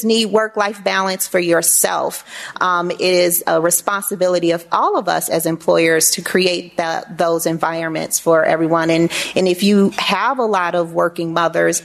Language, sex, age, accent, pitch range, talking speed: English, female, 40-59, American, 180-245 Hz, 165 wpm